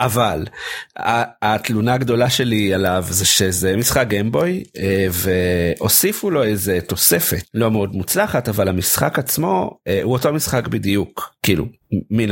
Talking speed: 120 wpm